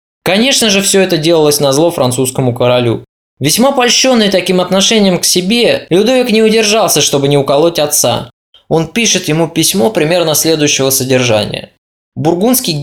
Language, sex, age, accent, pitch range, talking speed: Russian, male, 20-39, native, 150-215 Hz, 140 wpm